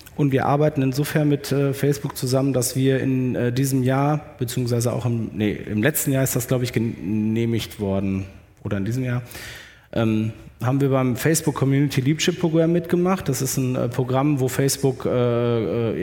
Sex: male